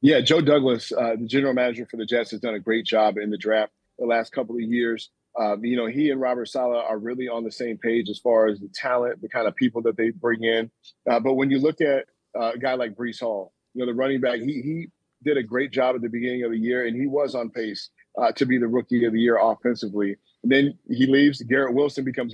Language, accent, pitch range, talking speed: English, American, 115-130 Hz, 265 wpm